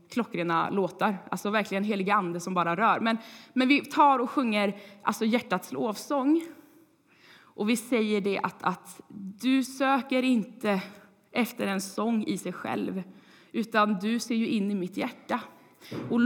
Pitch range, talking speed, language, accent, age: 195-250 Hz, 150 wpm, Swedish, native, 20-39